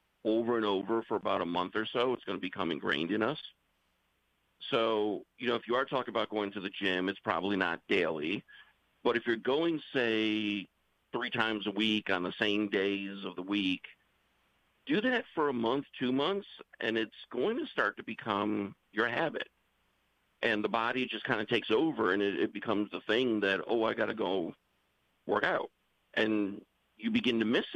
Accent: American